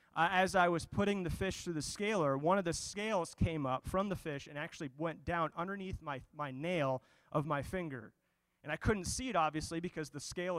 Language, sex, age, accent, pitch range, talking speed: English, male, 30-49, American, 145-185 Hz, 220 wpm